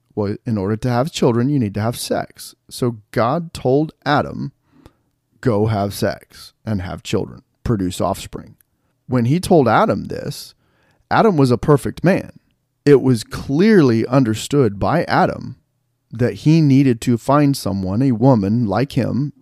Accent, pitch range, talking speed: American, 110-135 Hz, 150 wpm